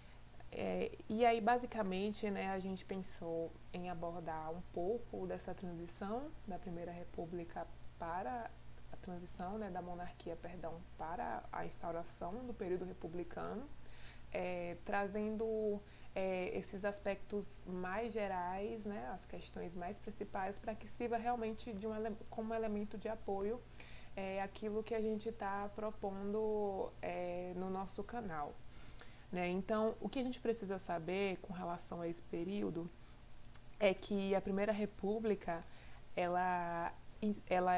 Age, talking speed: 20-39, 115 wpm